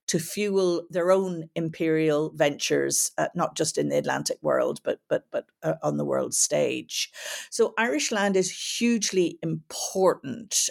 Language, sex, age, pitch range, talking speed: English, female, 50-69, 155-200 Hz, 150 wpm